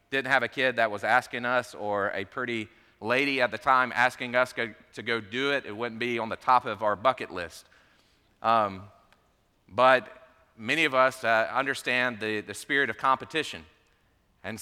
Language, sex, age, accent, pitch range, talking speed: English, male, 40-59, American, 110-130 Hz, 185 wpm